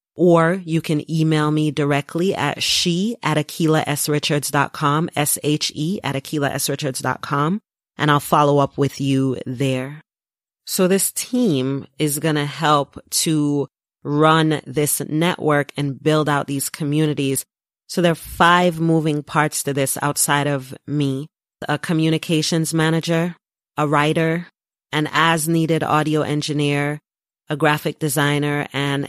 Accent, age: American, 30-49